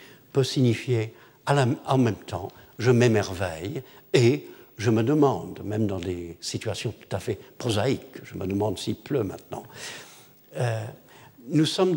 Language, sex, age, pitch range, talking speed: French, male, 60-79, 115-165 Hz, 170 wpm